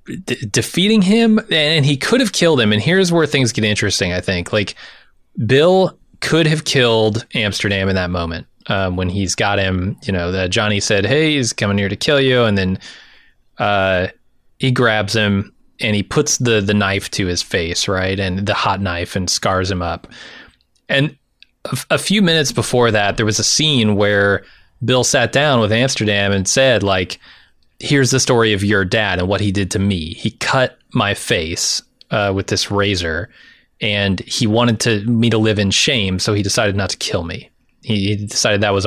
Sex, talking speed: male, 200 wpm